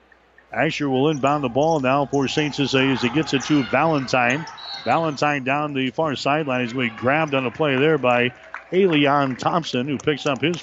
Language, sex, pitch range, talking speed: English, male, 130-155 Hz, 200 wpm